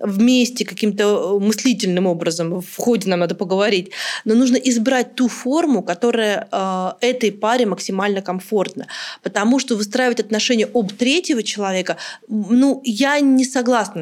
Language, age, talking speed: Russian, 30-49, 130 wpm